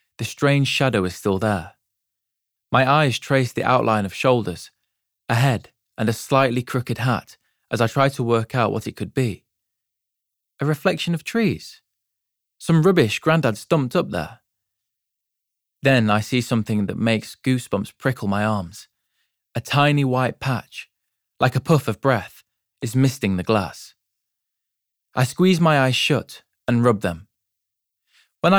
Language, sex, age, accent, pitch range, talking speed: English, male, 20-39, British, 105-135 Hz, 150 wpm